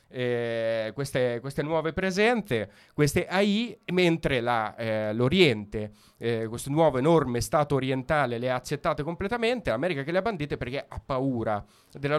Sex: male